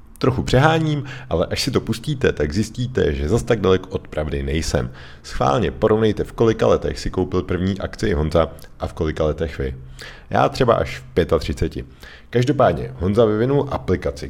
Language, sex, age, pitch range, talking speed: Czech, male, 40-59, 75-105 Hz, 170 wpm